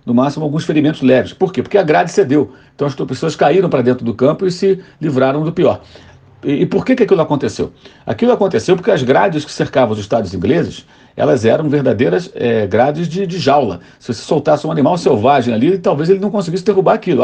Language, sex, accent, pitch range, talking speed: Portuguese, male, Brazilian, 130-200 Hz, 210 wpm